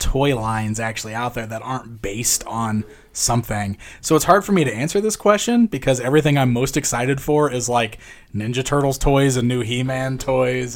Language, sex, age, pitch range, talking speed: English, male, 20-39, 115-140 Hz, 190 wpm